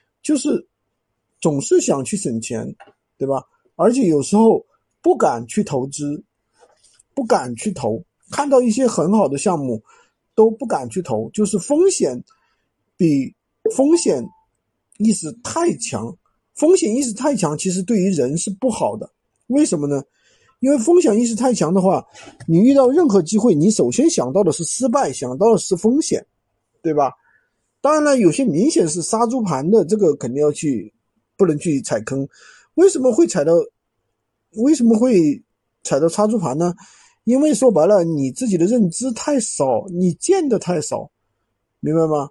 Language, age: Chinese, 50-69